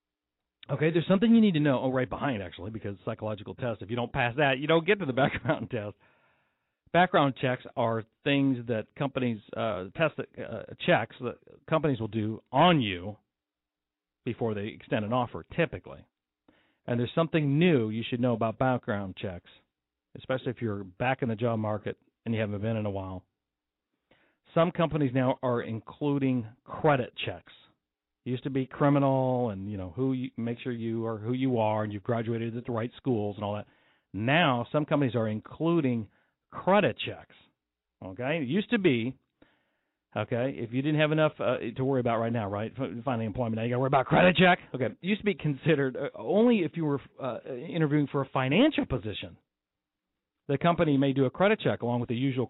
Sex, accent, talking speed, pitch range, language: male, American, 195 wpm, 110-140 Hz, English